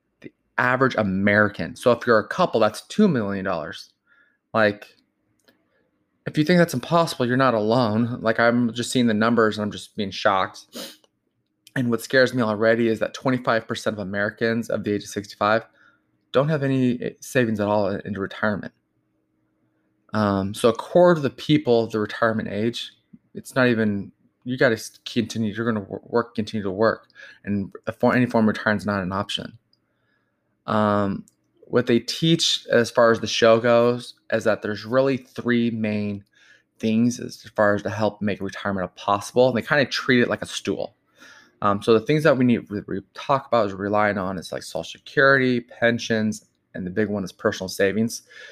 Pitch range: 105-120 Hz